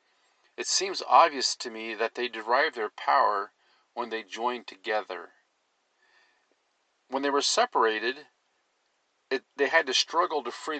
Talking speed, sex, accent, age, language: 140 wpm, male, American, 50-69, English